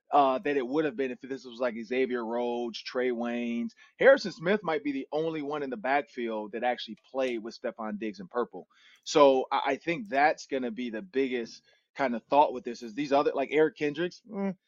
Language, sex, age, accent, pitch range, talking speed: English, male, 30-49, American, 125-155 Hz, 220 wpm